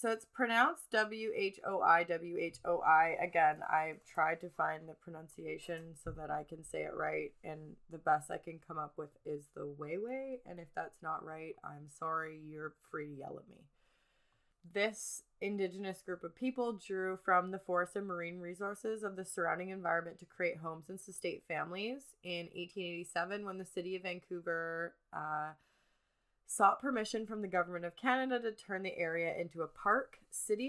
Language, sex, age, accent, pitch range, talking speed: English, female, 20-39, American, 165-195 Hz, 170 wpm